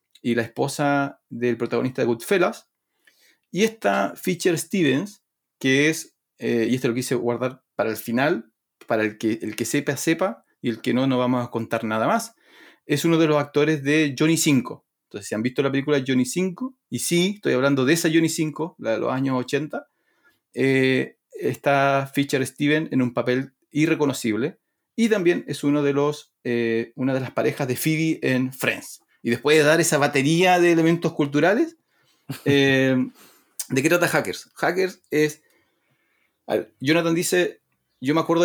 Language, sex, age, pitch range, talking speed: Spanish, male, 30-49, 125-160 Hz, 175 wpm